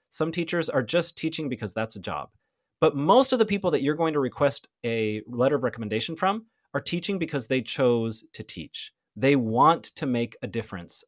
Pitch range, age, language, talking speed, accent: 125-195 Hz, 30-49, English, 200 wpm, American